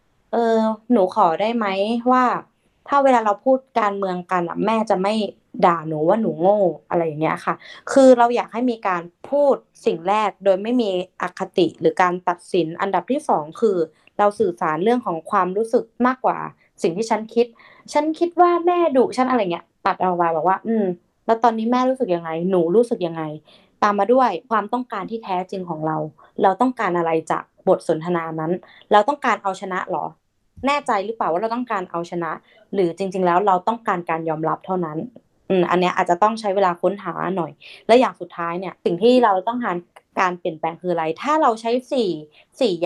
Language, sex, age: Thai, female, 20-39